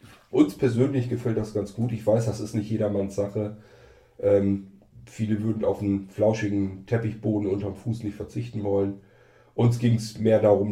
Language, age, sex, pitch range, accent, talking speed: German, 40-59, male, 100-110 Hz, German, 170 wpm